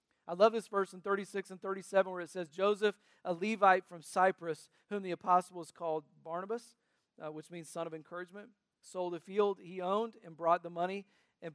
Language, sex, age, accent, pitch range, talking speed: English, male, 40-59, American, 165-195 Hz, 190 wpm